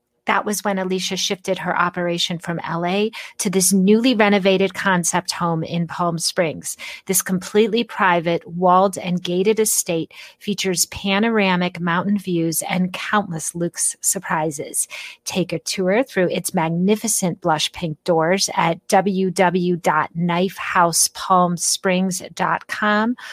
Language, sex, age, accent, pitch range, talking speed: English, female, 40-59, American, 180-215 Hz, 115 wpm